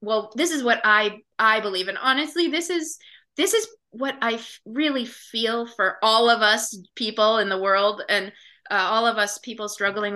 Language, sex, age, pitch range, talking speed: English, female, 30-49, 210-265 Hz, 195 wpm